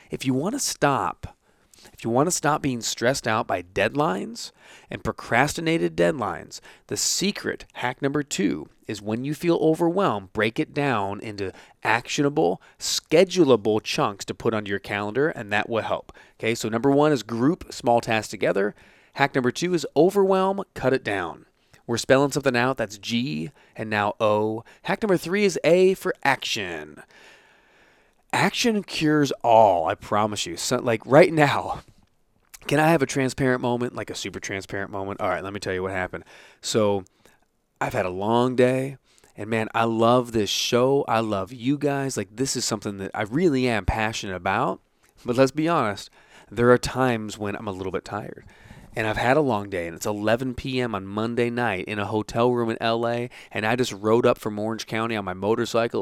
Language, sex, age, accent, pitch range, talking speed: English, male, 30-49, American, 105-130 Hz, 185 wpm